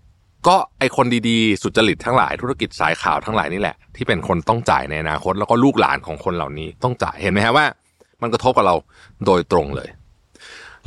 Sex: male